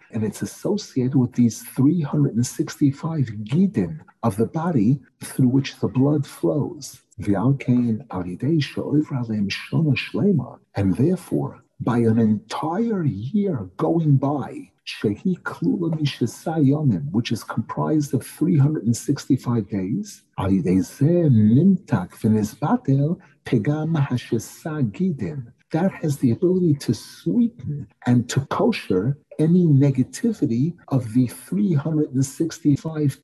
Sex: male